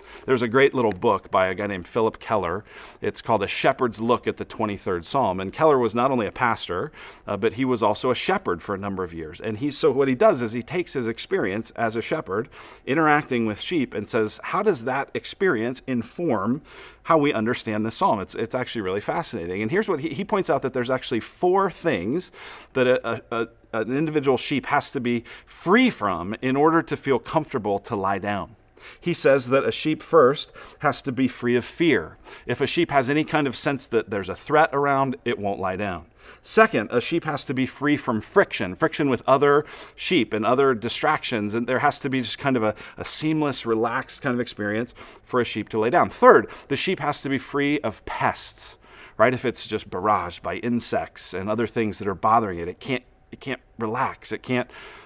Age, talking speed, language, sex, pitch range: 40-59, 220 wpm, English, male, 110-145 Hz